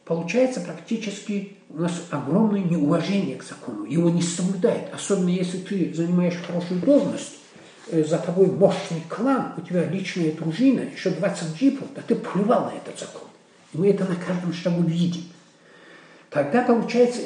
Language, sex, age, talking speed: Russian, male, 50-69, 150 wpm